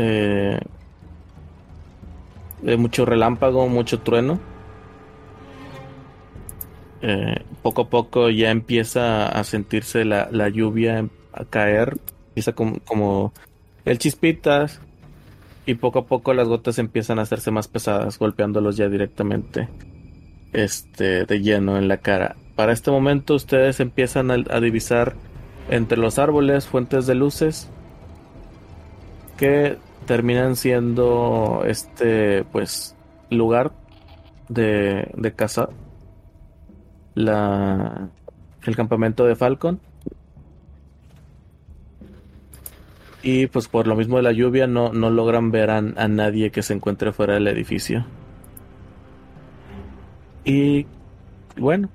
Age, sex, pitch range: 30-49, male, 100-120 Hz